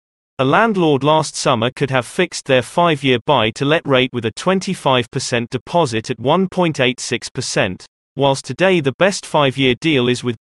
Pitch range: 120-165 Hz